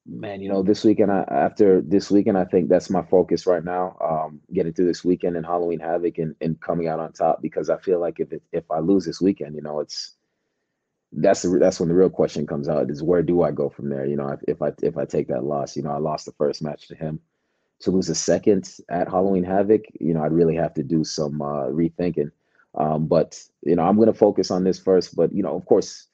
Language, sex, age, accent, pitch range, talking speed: English, male, 30-49, American, 75-85 Hz, 255 wpm